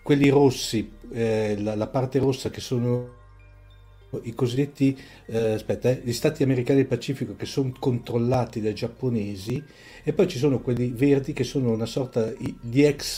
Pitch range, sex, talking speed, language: 110-130 Hz, male, 165 wpm, Italian